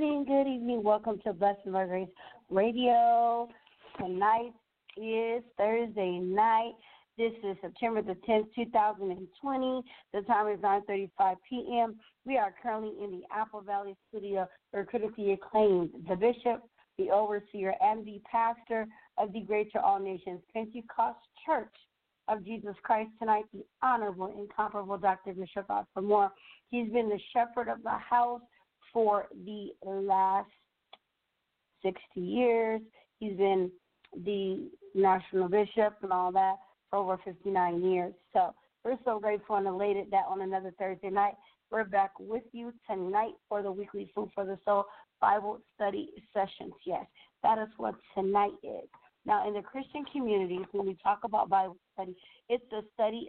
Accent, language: American, English